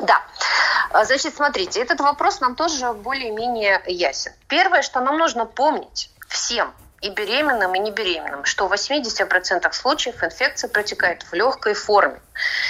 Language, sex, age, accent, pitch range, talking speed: Russian, female, 30-49, native, 180-260 Hz, 130 wpm